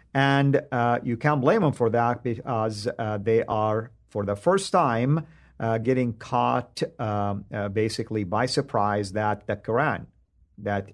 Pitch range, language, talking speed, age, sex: 105-130 Hz, English, 155 wpm, 50-69, male